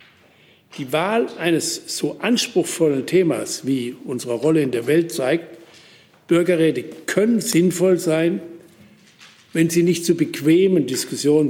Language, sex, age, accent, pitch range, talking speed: German, male, 60-79, German, 140-170 Hz, 120 wpm